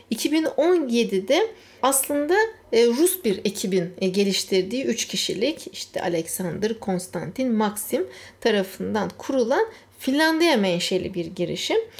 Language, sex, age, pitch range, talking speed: Turkish, female, 60-79, 195-295 Hz, 90 wpm